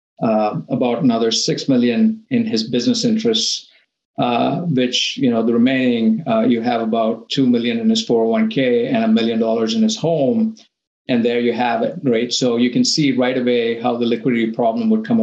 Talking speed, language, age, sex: 195 wpm, English, 50-69, male